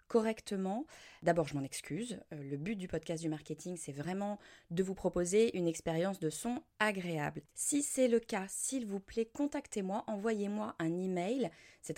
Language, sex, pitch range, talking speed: French, female, 170-230 Hz, 165 wpm